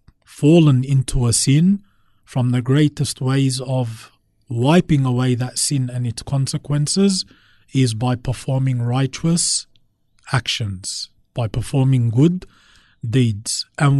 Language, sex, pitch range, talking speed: English, male, 120-145 Hz, 110 wpm